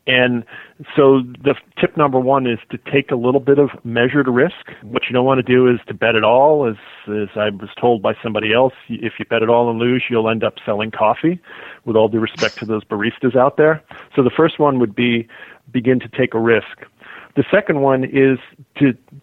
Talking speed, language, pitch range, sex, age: 220 wpm, English, 115-130 Hz, male, 40-59